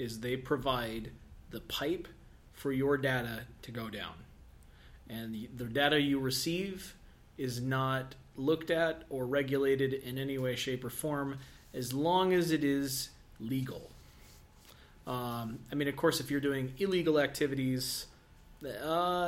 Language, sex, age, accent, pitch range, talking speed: English, male, 30-49, American, 120-145 Hz, 145 wpm